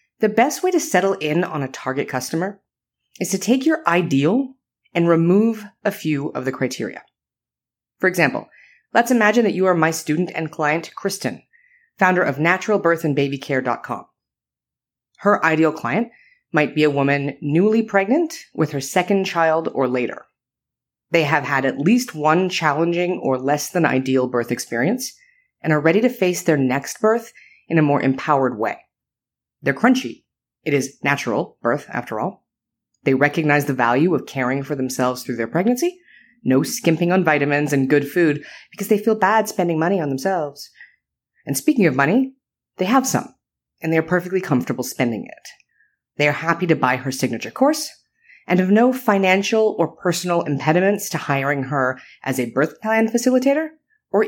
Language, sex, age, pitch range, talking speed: English, female, 30-49, 145-220 Hz, 165 wpm